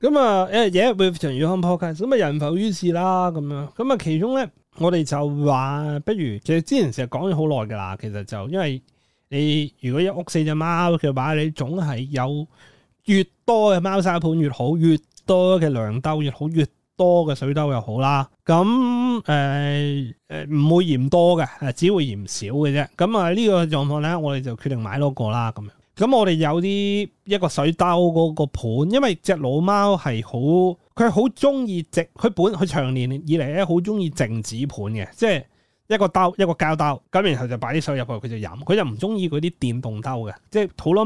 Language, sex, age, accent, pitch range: Chinese, male, 30-49, native, 130-180 Hz